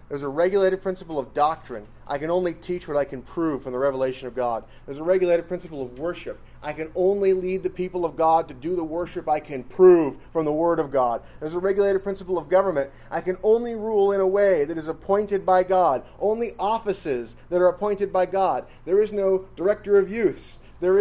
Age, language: 30-49, English